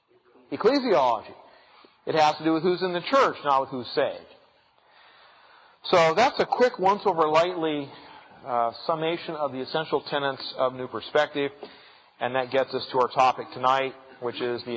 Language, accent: English, American